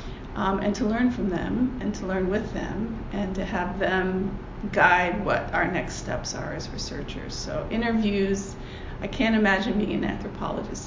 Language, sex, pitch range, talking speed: English, female, 195-250 Hz, 170 wpm